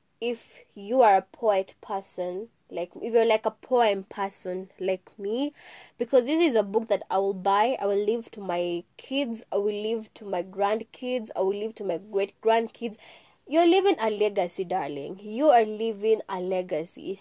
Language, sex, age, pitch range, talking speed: English, female, 20-39, 195-245 Hz, 180 wpm